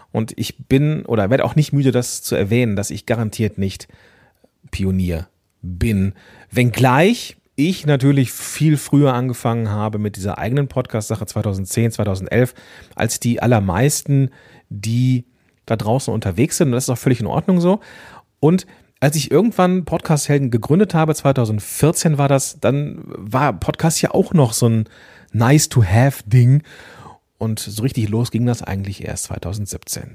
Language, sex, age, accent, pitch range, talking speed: German, male, 40-59, German, 110-145 Hz, 150 wpm